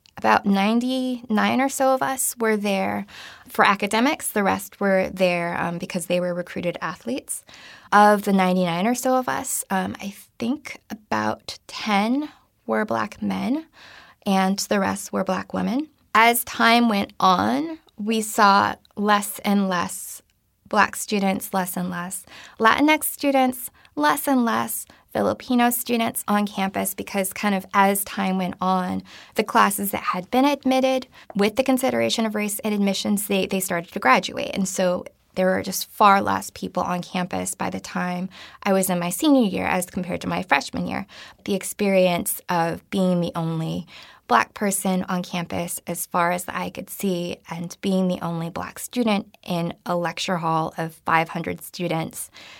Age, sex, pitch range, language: 20-39, female, 175-230 Hz, English